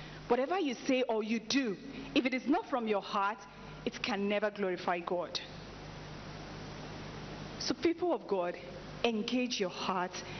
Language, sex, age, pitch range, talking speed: English, female, 40-59, 195-285 Hz, 145 wpm